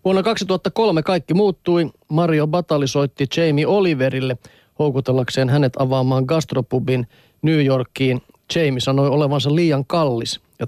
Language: Finnish